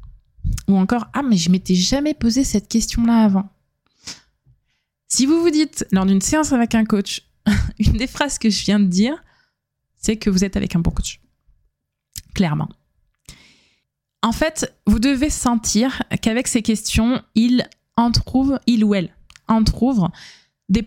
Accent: French